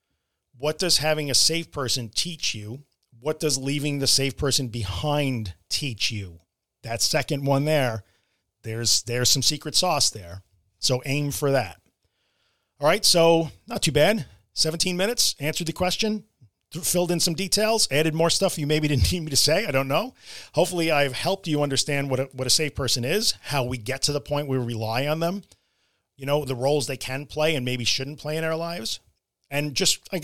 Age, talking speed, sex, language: 40-59, 195 wpm, male, English